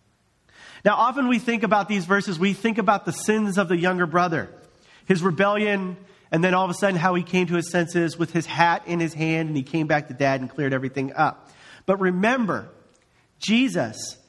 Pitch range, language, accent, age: 160-215 Hz, English, American, 40-59